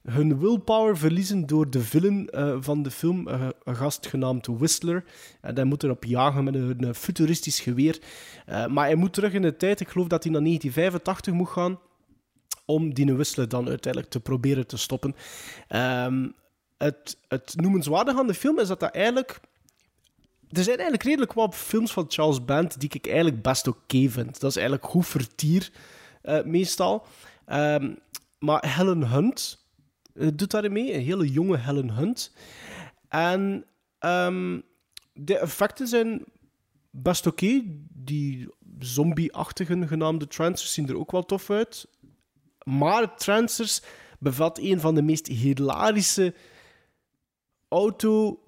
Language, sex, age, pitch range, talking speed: Dutch, male, 20-39, 140-190 Hz, 145 wpm